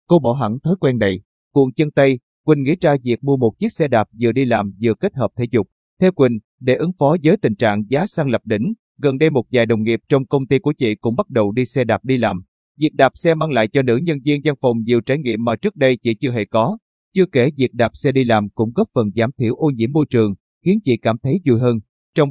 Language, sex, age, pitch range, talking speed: Vietnamese, male, 20-39, 115-145 Hz, 270 wpm